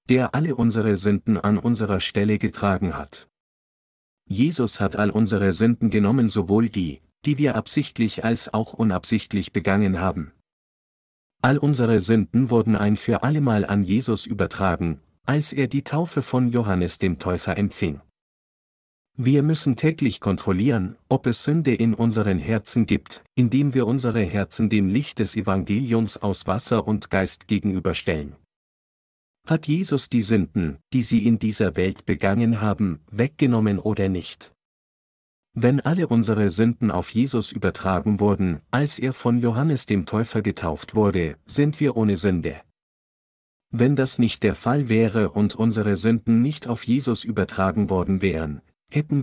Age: 50-69